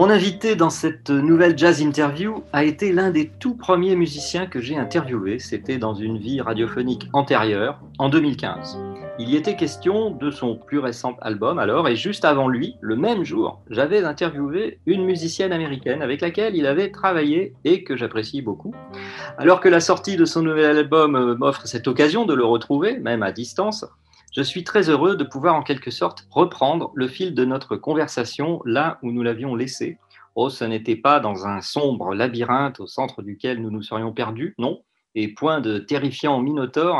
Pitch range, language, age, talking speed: 120-170 Hz, French, 40-59, 185 wpm